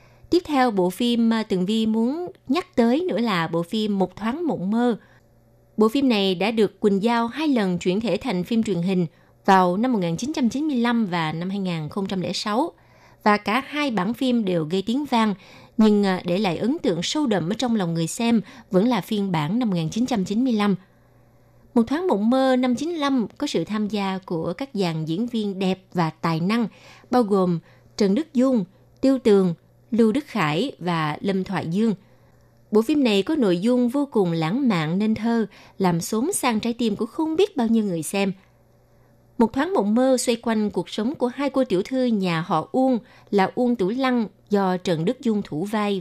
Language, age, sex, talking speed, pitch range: Vietnamese, 20-39, female, 195 wpm, 175-245 Hz